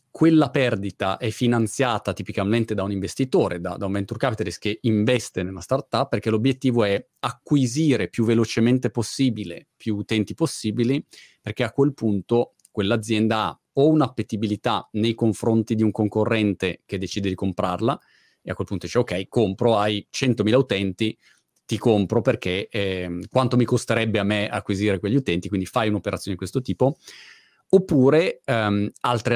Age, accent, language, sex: 30-49, native, Italian, male